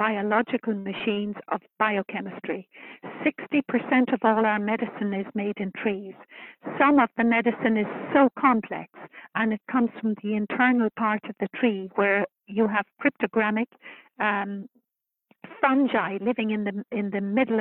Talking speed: 140 wpm